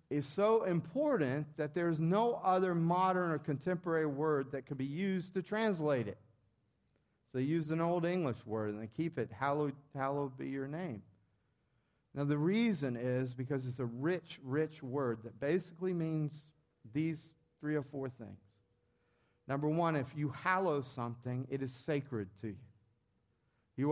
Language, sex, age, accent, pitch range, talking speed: English, male, 40-59, American, 120-170 Hz, 165 wpm